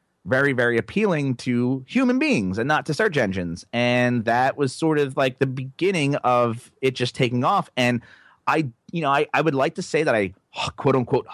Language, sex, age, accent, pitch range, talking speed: English, male, 30-49, American, 105-150 Hz, 200 wpm